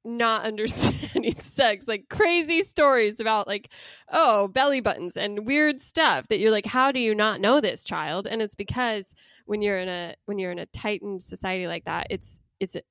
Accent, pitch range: American, 195-240 Hz